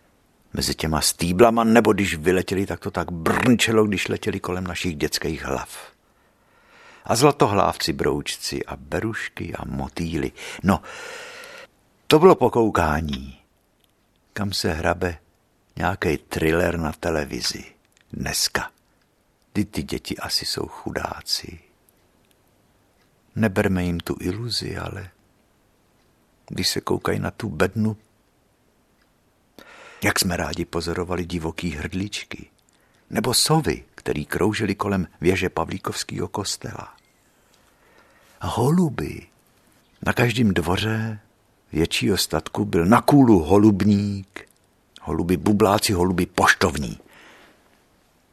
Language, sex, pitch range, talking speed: Czech, male, 85-110 Hz, 100 wpm